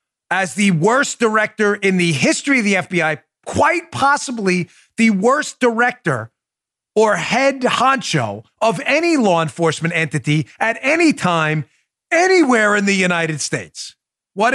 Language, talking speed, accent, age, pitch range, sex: English, 130 wpm, American, 40-59, 145-205 Hz, male